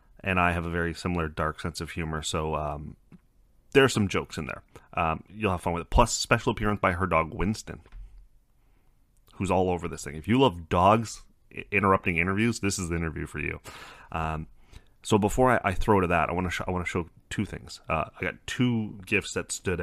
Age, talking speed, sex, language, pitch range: 30-49, 220 wpm, male, English, 85-105 Hz